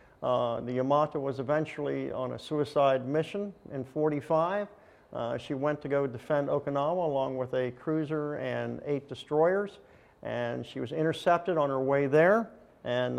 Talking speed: 155 wpm